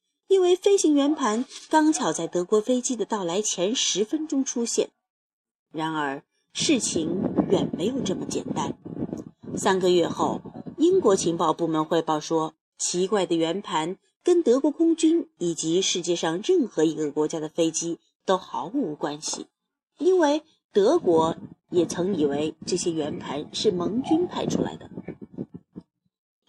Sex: female